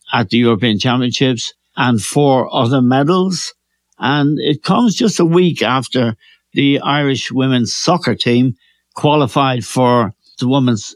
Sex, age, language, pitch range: male, 60-79, English, 115-145 Hz